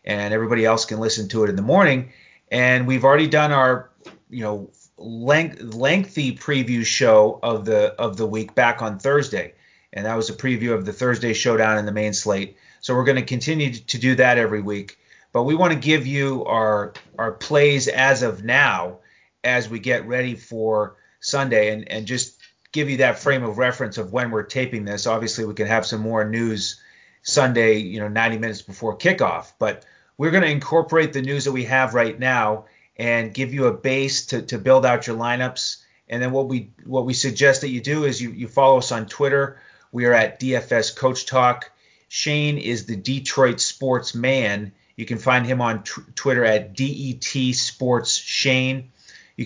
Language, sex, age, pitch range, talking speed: English, male, 30-49, 110-135 Hz, 195 wpm